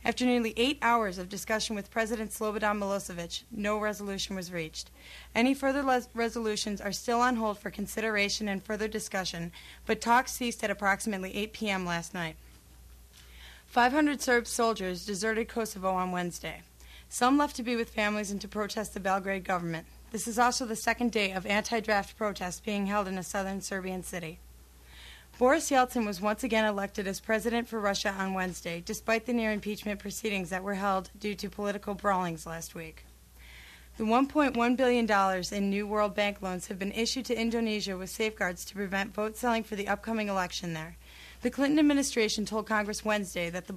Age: 30-49